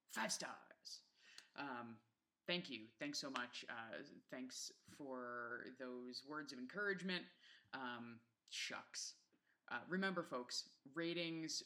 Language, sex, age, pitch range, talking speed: English, female, 20-39, 120-160 Hz, 110 wpm